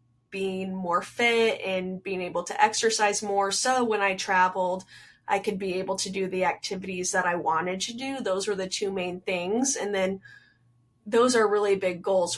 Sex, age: female, 20-39